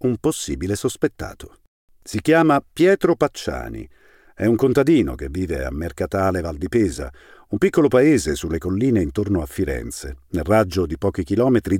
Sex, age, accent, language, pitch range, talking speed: male, 50-69, native, Italian, 85-125 Hz, 155 wpm